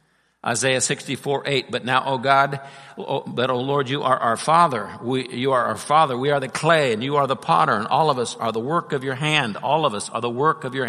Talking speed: 260 wpm